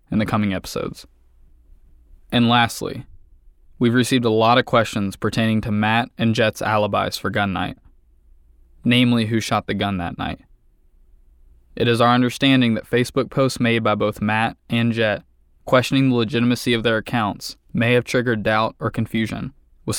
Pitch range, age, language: 90-120 Hz, 20-39, English